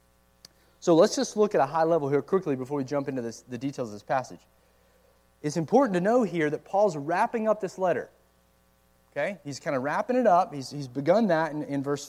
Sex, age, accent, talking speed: male, 30-49, American, 225 wpm